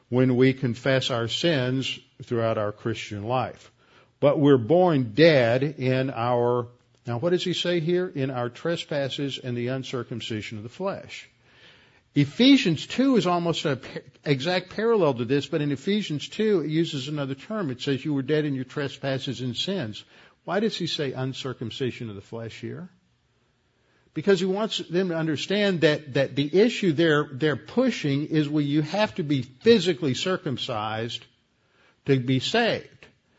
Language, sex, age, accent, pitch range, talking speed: English, male, 50-69, American, 130-170 Hz, 160 wpm